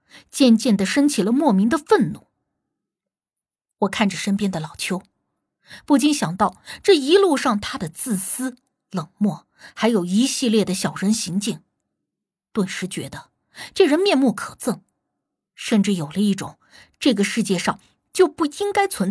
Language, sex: Chinese, female